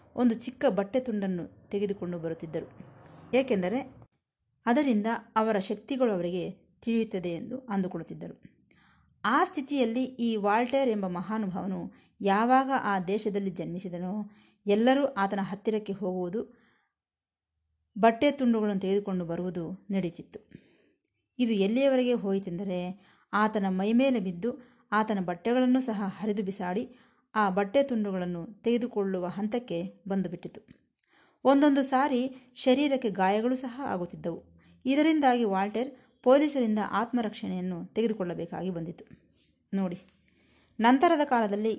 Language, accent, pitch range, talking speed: Kannada, native, 185-245 Hz, 95 wpm